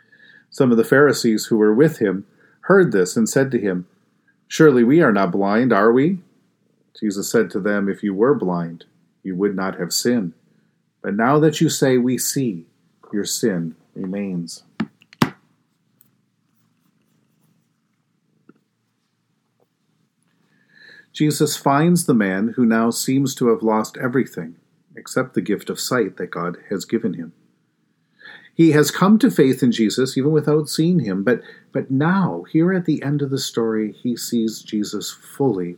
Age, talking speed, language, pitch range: 50-69, 150 wpm, English, 100-145 Hz